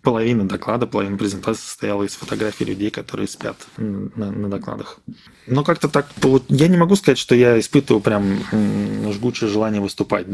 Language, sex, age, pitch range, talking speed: Russian, male, 20-39, 105-120 Hz, 155 wpm